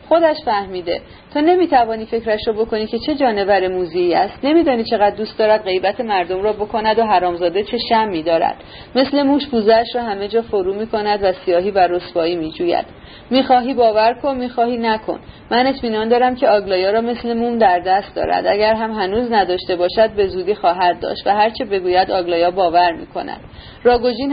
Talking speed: 190 wpm